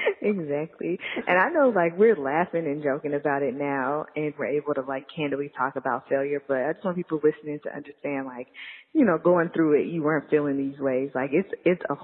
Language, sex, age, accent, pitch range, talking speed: English, female, 20-39, American, 140-160 Hz, 220 wpm